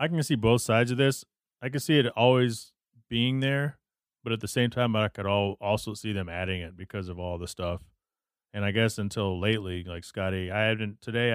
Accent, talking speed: American, 220 wpm